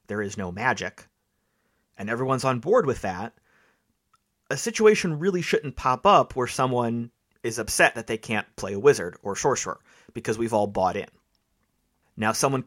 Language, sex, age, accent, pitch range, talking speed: English, male, 30-49, American, 110-135 Hz, 165 wpm